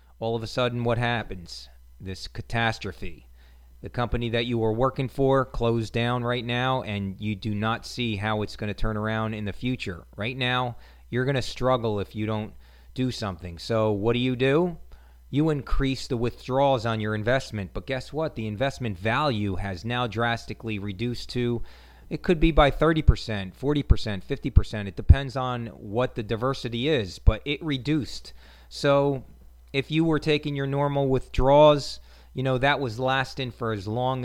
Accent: American